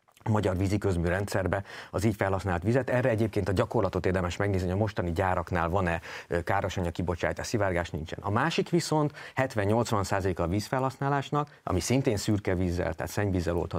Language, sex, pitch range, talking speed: Hungarian, male, 90-115 Hz, 150 wpm